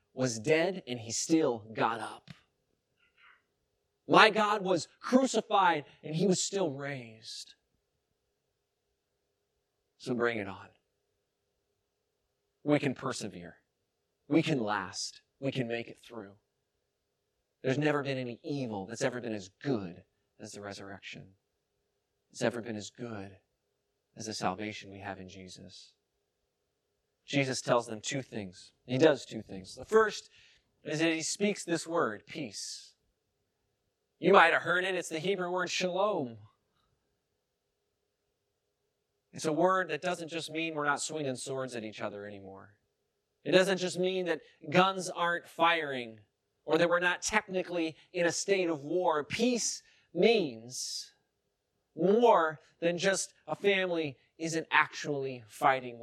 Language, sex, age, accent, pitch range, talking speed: English, male, 30-49, American, 110-170 Hz, 135 wpm